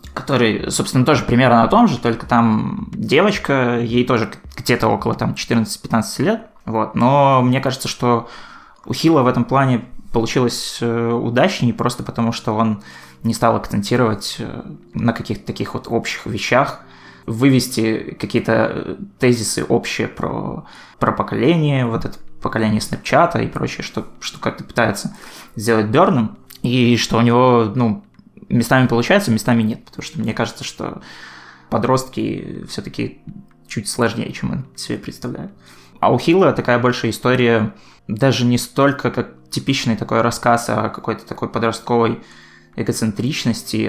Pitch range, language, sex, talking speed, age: 115-125 Hz, Russian, male, 135 wpm, 20-39